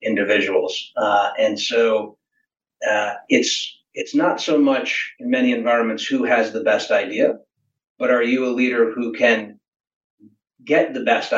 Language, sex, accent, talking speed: English, male, American, 150 wpm